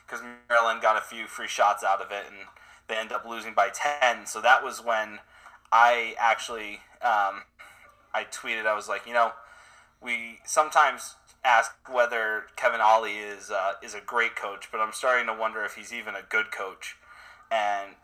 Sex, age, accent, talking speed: male, 20-39, American, 185 wpm